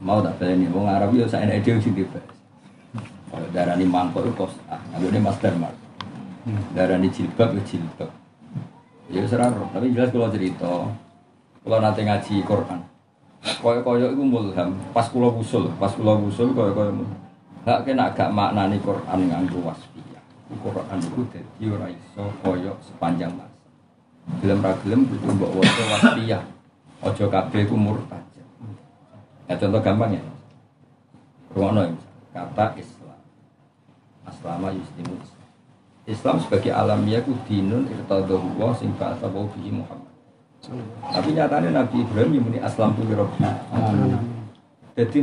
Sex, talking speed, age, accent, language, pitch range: male, 135 wpm, 50-69, native, Indonesian, 95-120 Hz